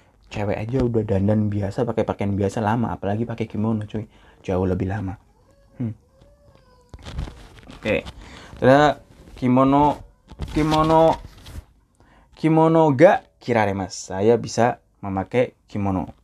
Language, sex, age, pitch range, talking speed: Indonesian, male, 20-39, 100-130 Hz, 105 wpm